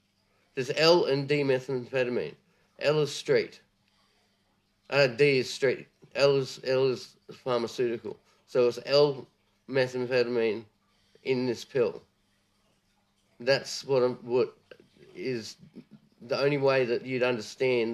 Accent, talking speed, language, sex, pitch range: Australian, 115 wpm, English, male, 105-130 Hz